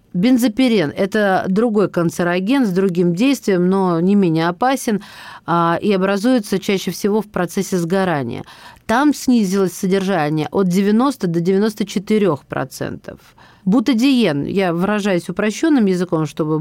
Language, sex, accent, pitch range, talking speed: Russian, female, native, 180-225 Hz, 110 wpm